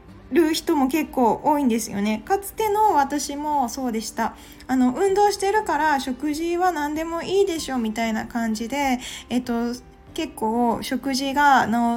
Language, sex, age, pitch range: Japanese, female, 20-39, 230-315 Hz